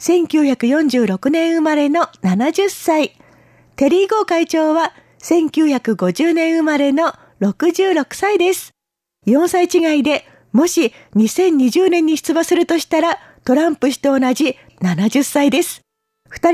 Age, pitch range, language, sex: 40-59, 280-345 Hz, Japanese, female